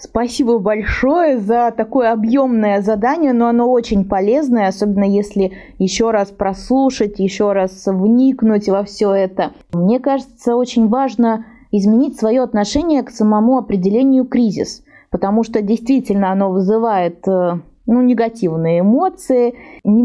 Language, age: Russian, 20-39